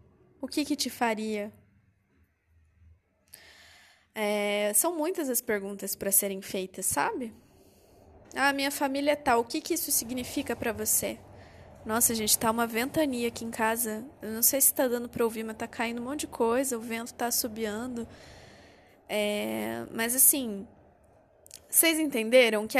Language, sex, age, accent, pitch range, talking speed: Portuguese, female, 20-39, Brazilian, 210-275 Hz, 155 wpm